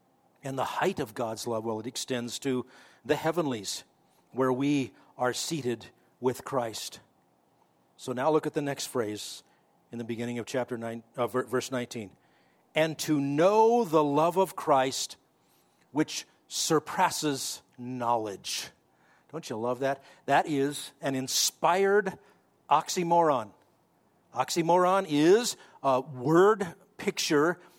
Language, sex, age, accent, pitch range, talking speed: English, male, 50-69, American, 130-170 Hz, 125 wpm